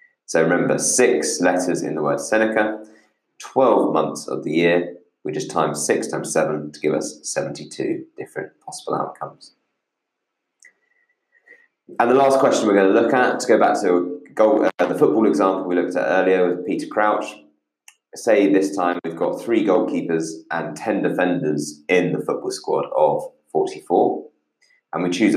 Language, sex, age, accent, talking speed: English, male, 20-39, British, 165 wpm